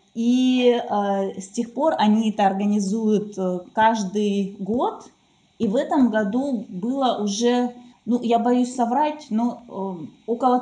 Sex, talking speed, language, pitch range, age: female, 135 wpm, Russian, 195-245 Hz, 20-39